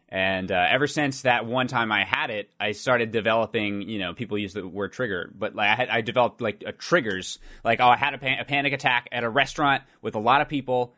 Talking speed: 250 wpm